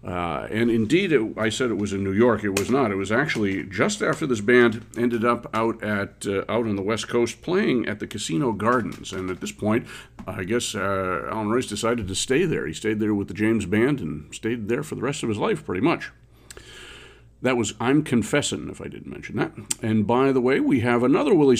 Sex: male